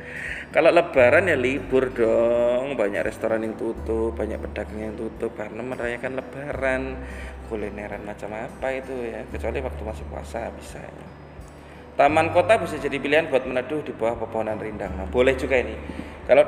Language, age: Indonesian, 20-39